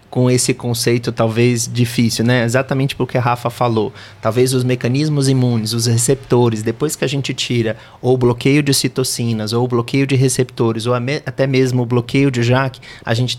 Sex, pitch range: male, 120-130 Hz